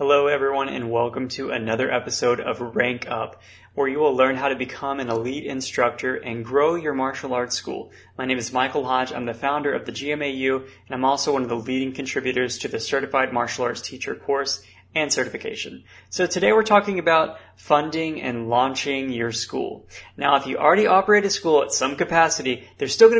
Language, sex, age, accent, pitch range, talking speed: English, male, 20-39, American, 120-145 Hz, 200 wpm